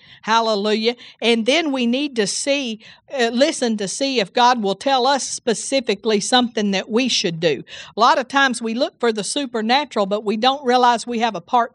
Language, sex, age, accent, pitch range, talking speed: English, female, 50-69, American, 210-265 Hz, 200 wpm